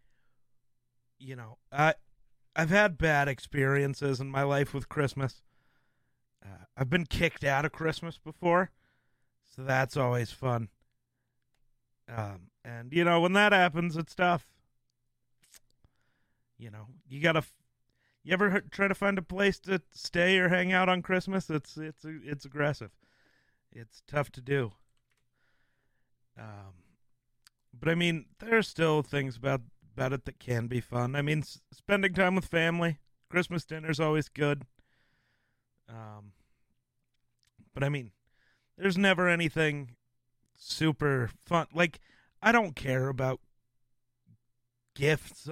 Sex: male